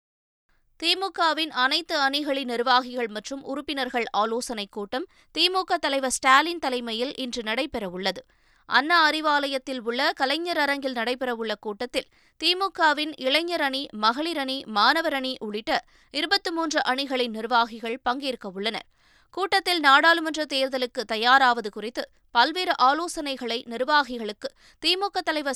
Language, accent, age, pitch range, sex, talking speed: Tamil, native, 20-39, 235-295 Hz, female, 95 wpm